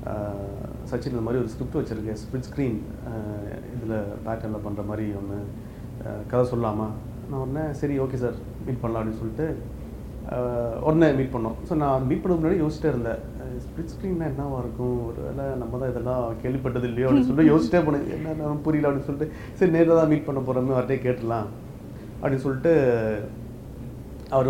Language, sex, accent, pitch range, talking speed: Tamil, male, native, 115-150 Hz, 160 wpm